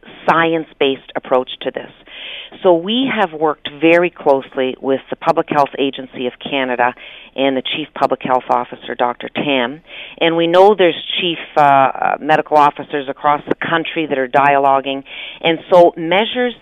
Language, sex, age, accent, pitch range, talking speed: English, female, 50-69, American, 140-170 Hz, 150 wpm